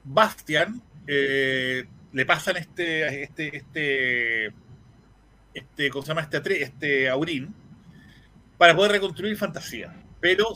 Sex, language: male, Spanish